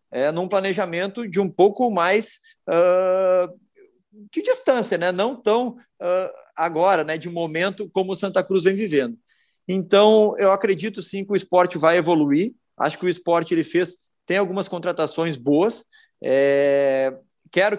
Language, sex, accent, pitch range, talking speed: Portuguese, male, Brazilian, 145-190 Hz, 150 wpm